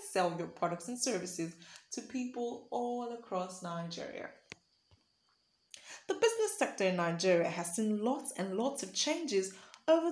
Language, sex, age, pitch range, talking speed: English, female, 20-39, 180-295 Hz, 135 wpm